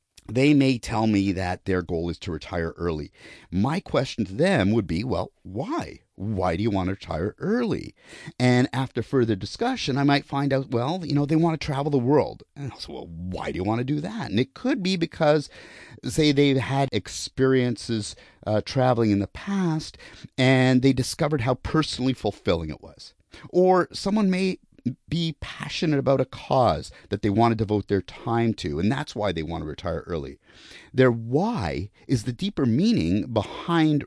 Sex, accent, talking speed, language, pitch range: male, American, 190 wpm, English, 90-140 Hz